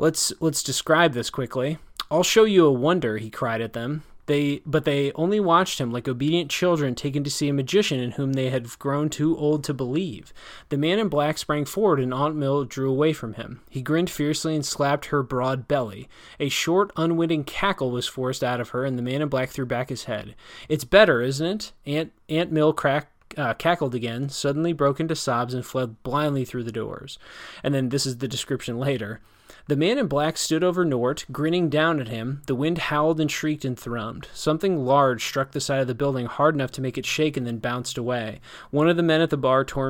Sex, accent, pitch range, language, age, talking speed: male, American, 130-155 Hz, English, 20-39, 220 wpm